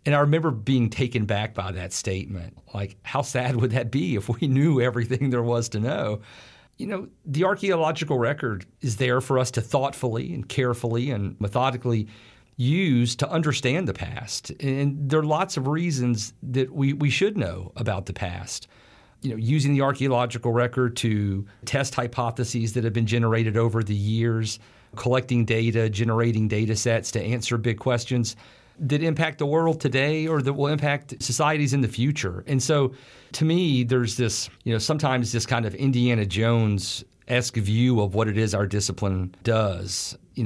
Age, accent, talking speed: 40-59, American, 175 wpm